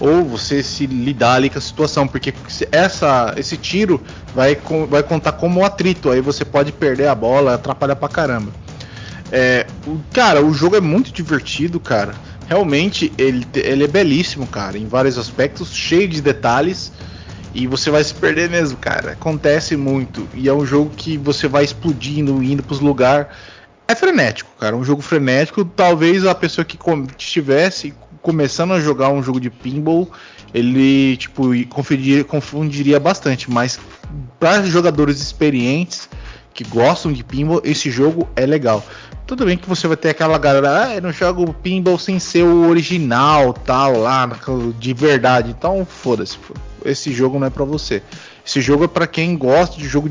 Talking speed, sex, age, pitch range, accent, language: 165 wpm, male, 20-39, 130-165 Hz, Brazilian, Portuguese